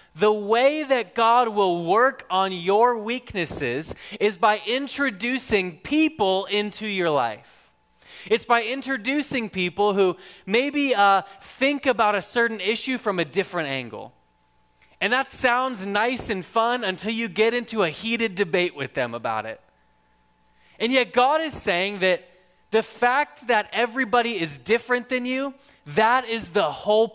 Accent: American